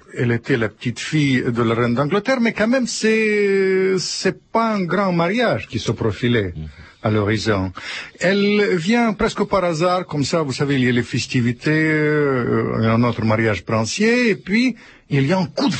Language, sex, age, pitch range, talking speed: French, male, 50-69, 135-210 Hz, 190 wpm